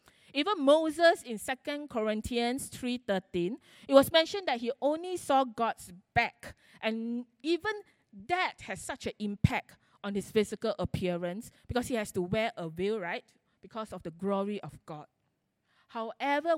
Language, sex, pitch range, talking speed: English, female, 185-255 Hz, 150 wpm